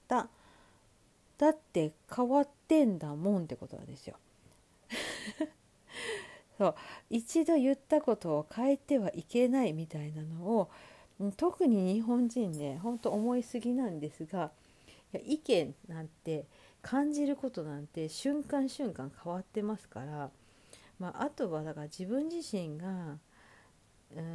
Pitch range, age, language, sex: 160-240 Hz, 40-59, Japanese, female